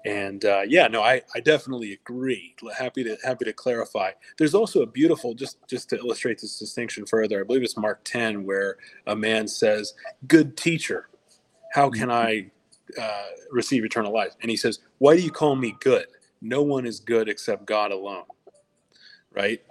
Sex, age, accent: male, 30-49, American